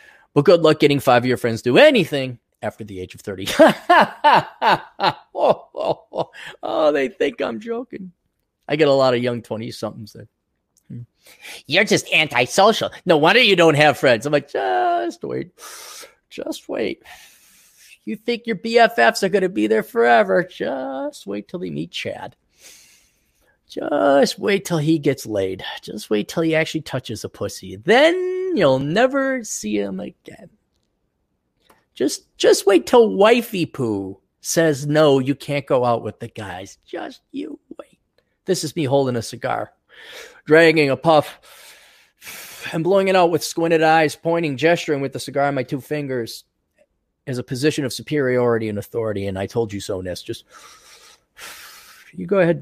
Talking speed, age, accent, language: 165 wpm, 30-49, American, English